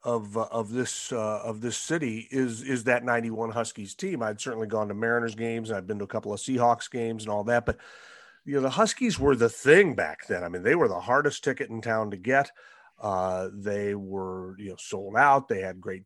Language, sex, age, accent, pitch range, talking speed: English, male, 40-59, American, 110-135 Hz, 235 wpm